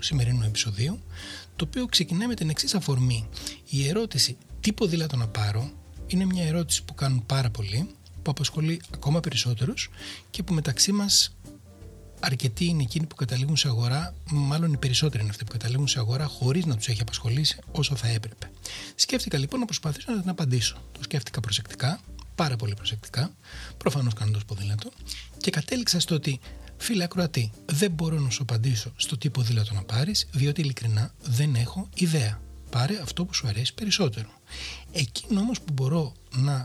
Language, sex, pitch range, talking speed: Greek, male, 110-155 Hz, 165 wpm